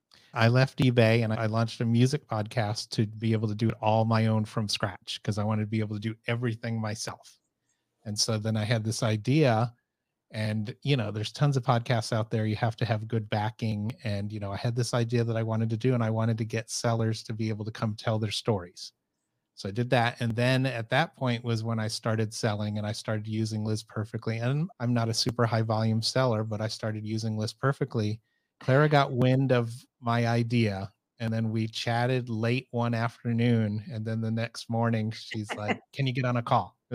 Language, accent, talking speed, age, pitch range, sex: English, American, 225 wpm, 30-49, 110-125 Hz, male